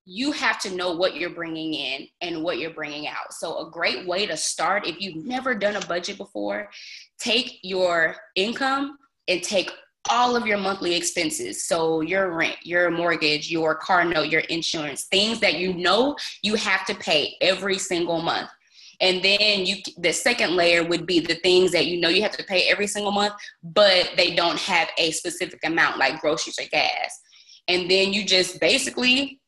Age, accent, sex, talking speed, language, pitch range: 20-39, American, female, 190 wpm, English, 170-205 Hz